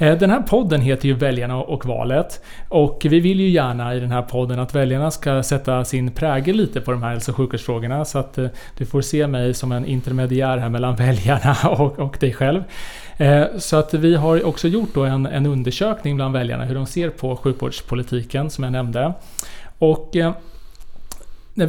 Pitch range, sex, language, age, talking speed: 130-160 Hz, male, Swedish, 30-49, 185 wpm